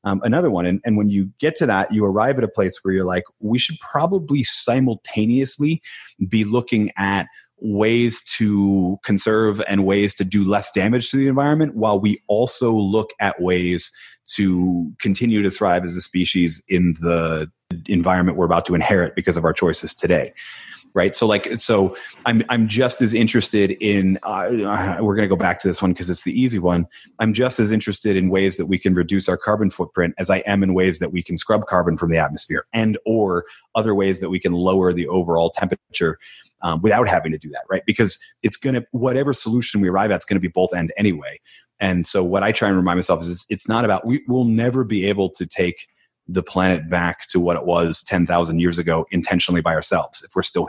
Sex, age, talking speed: male, 30-49, 215 wpm